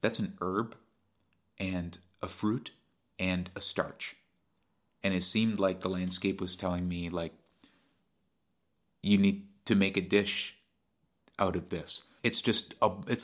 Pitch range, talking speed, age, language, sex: 85-100 Hz, 140 wpm, 30-49, English, male